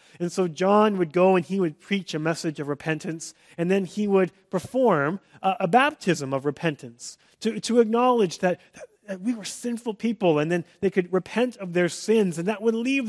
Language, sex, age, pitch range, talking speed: English, male, 30-49, 150-195 Hz, 200 wpm